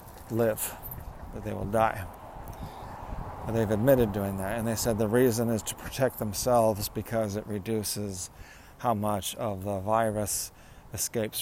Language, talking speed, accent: English, 140 wpm, American